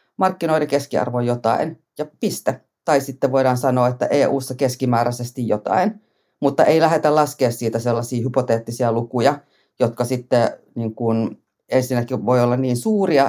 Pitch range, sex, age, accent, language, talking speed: 120-140 Hz, female, 30-49, native, Finnish, 135 wpm